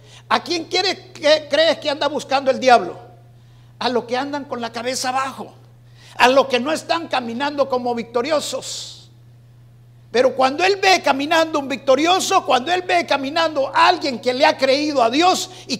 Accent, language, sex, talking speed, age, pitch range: Mexican, Spanish, male, 170 wpm, 50-69, 185-285 Hz